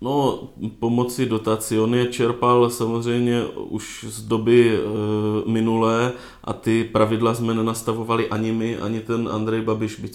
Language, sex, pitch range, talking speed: Czech, male, 105-110 Hz, 135 wpm